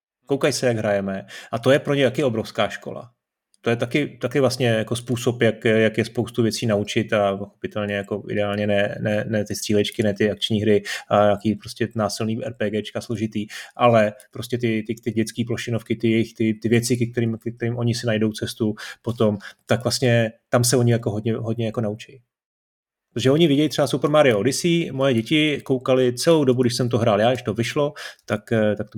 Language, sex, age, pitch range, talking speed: Czech, male, 30-49, 110-130 Hz, 195 wpm